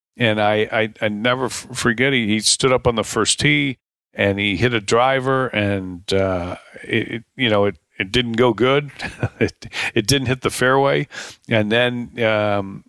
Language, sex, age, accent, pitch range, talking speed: English, male, 40-59, American, 105-135 Hz, 185 wpm